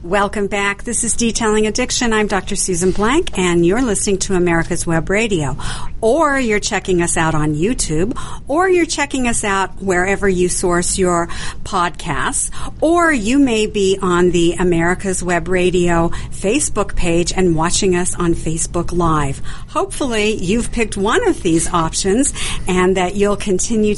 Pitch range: 170-215 Hz